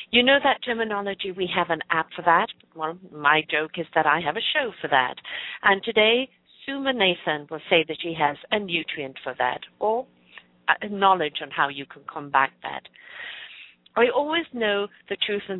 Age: 50-69